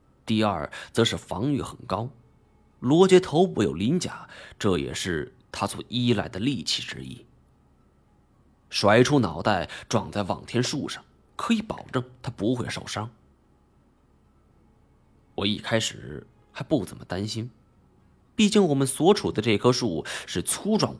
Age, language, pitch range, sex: 20-39, Chinese, 85-135 Hz, male